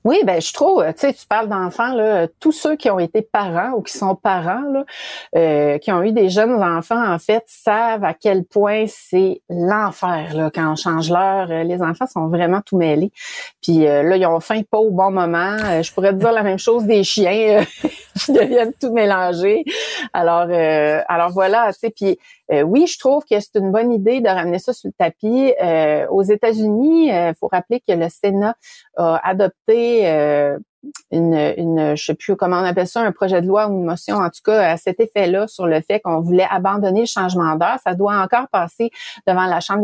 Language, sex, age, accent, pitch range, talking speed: French, female, 30-49, Canadian, 175-230 Hz, 215 wpm